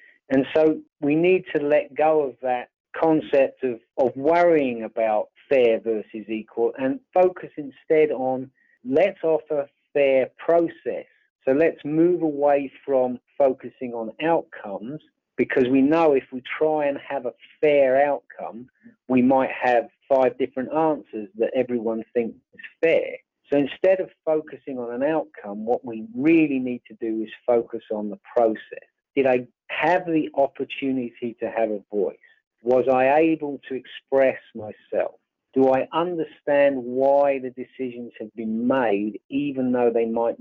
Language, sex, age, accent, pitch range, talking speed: English, male, 40-59, British, 115-155 Hz, 150 wpm